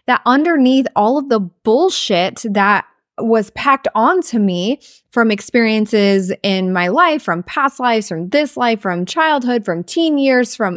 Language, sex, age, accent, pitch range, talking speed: English, female, 20-39, American, 195-250 Hz, 155 wpm